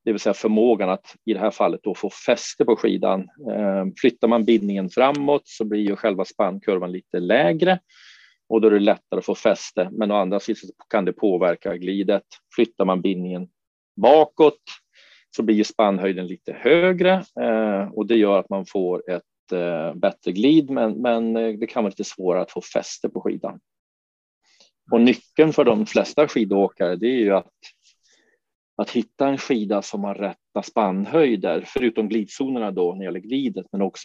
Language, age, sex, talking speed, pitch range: Swedish, 40-59, male, 175 wpm, 95-115 Hz